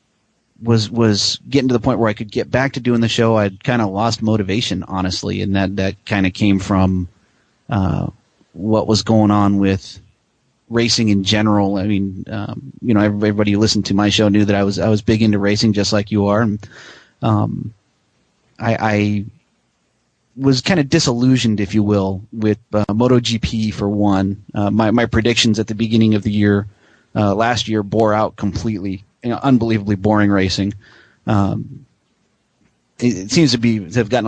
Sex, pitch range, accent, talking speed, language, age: male, 105-120 Hz, American, 190 wpm, English, 30-49